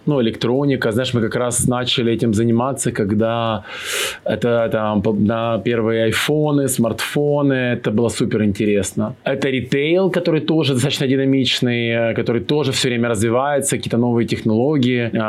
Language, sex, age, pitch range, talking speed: Ukrainian, male, 20-39, 110-130 Hz, 130 wpm